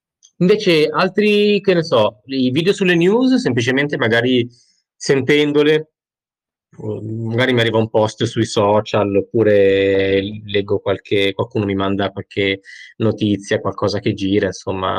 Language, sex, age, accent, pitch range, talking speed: Italian, male, 20-39, native, 105-135 Hz, 125 wpm